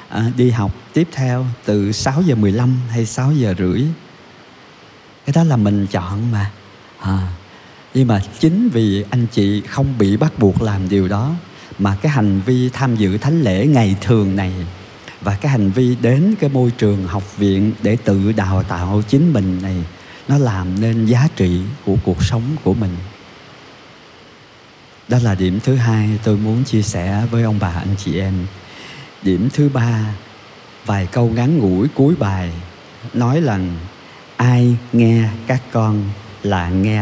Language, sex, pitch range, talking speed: Vietnamese, male, 100-125 Hz, 165 wpm